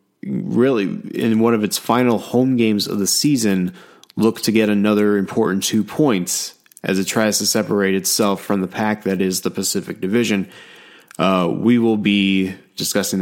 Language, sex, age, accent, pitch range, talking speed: English, male, 20-39, American, 95-110 Hz, 170 wpm